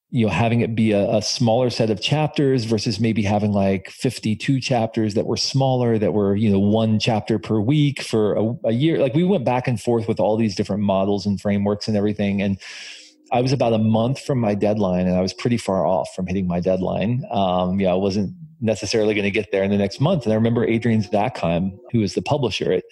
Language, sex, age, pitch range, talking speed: English, male, 40-59, 105-130 Hz, 230 wpm